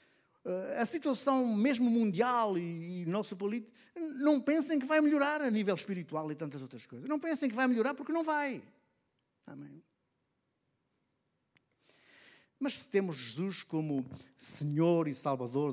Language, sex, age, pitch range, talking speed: Portuguese, male, 50-69, 135-195 Hz, 135 wpm